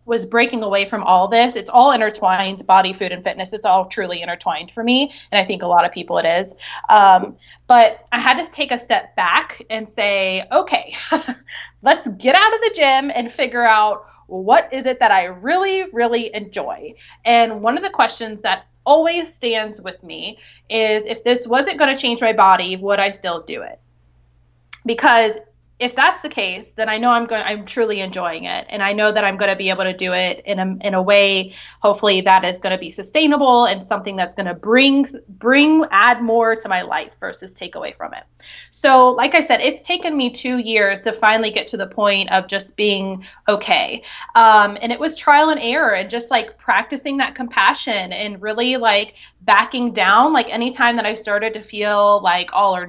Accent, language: American, English